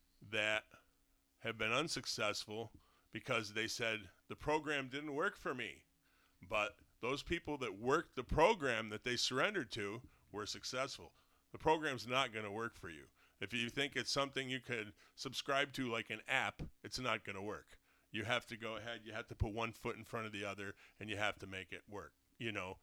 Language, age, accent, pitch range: English, 40-59, American, 100-120 Hz